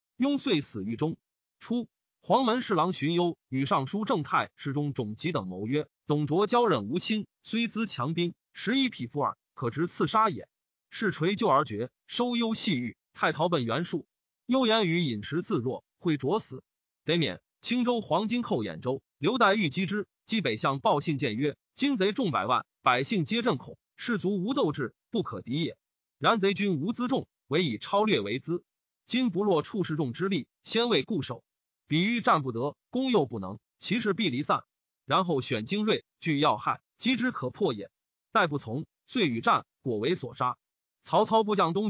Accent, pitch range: native, 145-225 Hz